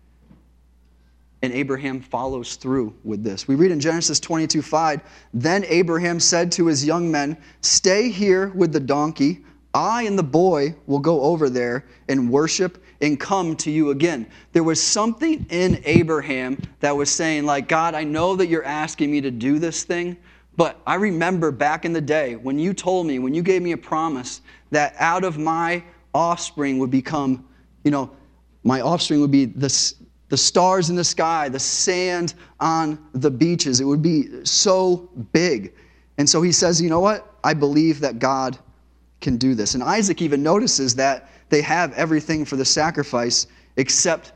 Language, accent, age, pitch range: English, American, 30-49, 130-170 Hz